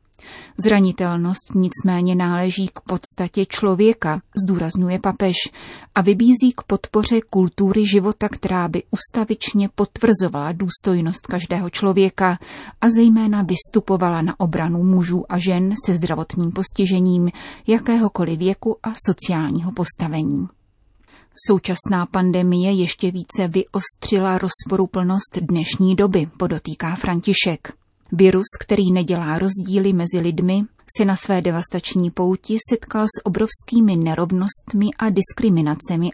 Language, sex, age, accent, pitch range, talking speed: Czech, female, 30-49, native, 175-205 Hz, 105 wpm